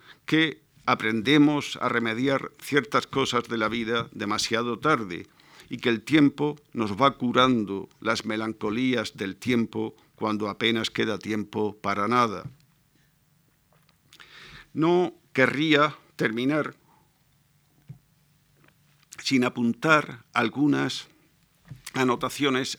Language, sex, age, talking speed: Spanish, male, 50-69, 90 wpm